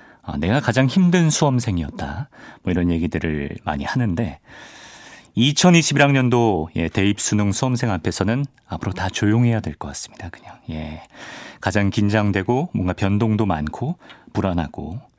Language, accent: Korean, native